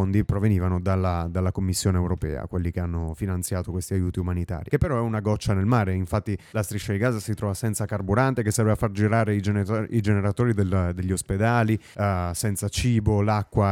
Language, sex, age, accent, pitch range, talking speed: Italian, male, 30-49, native, 95-115 Hz, 175 wpm